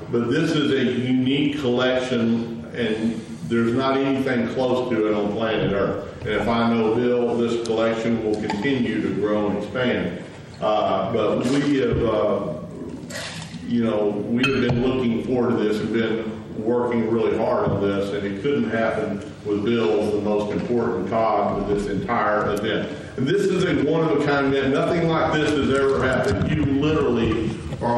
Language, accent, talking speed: English, American, 170 wpm